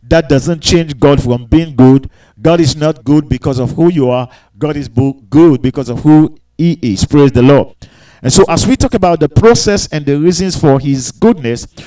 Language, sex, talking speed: English, male, 205 wpm